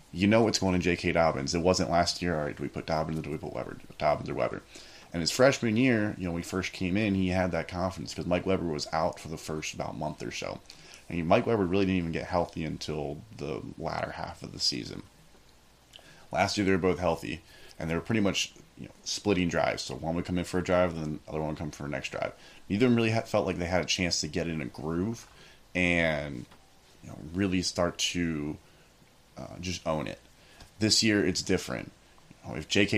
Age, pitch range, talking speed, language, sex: 30-49, 85-100 Hz, 250 wpm, English, male